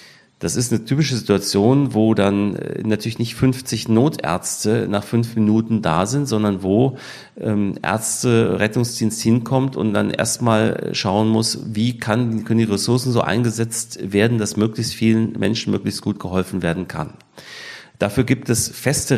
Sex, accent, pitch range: male, German, 105-130 Hz